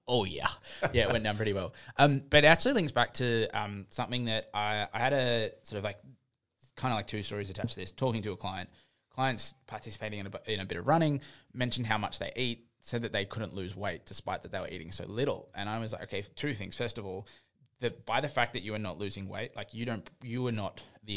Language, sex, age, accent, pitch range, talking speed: English, male, 20-39, Australian, 100-130 Hz, 255 wpm